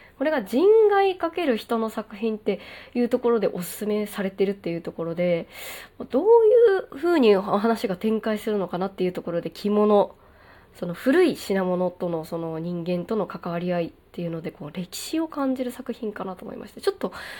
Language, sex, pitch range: Japanese, female, 190-265 Hz